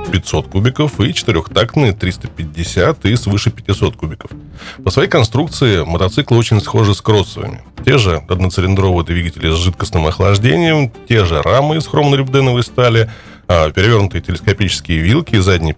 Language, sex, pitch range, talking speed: Russian, male, 90-120 Hz, 135 wpm